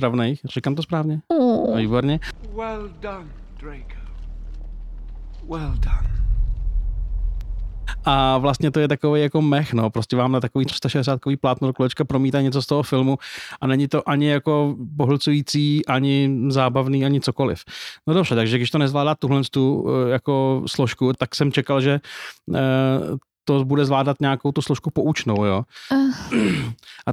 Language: Czech